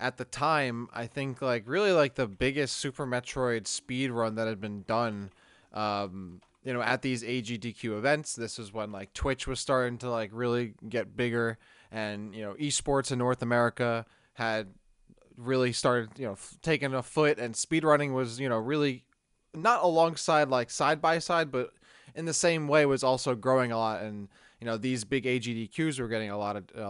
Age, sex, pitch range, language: 20-39, male, 110-135 Hz, English